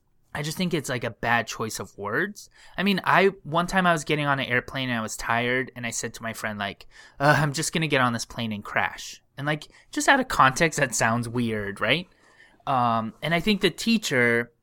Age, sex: 20-39, male